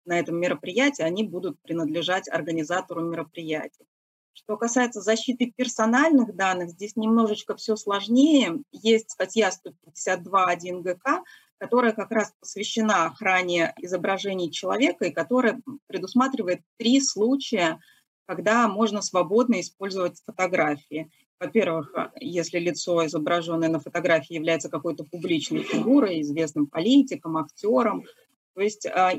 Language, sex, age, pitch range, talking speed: Russian, female, 30-49, 175-225 Hz, 110 wpm